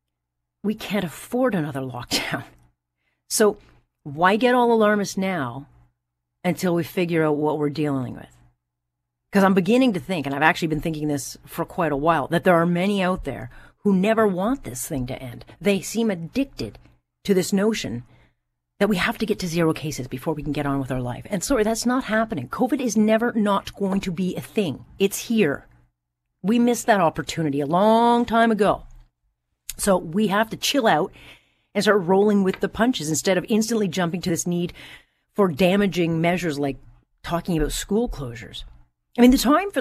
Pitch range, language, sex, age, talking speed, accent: 140-210 Hz, English, female, 40-59, 190 wpm, American